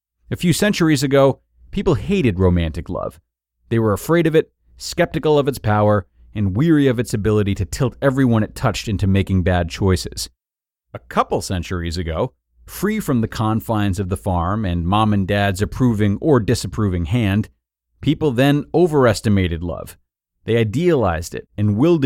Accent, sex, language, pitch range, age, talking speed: American, male, English, 90-135 Hz, 30-49, 160 wpm